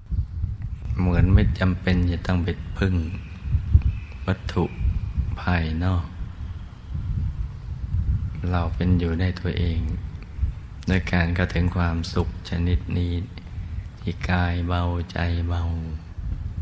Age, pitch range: 20-39, 85-95 Hz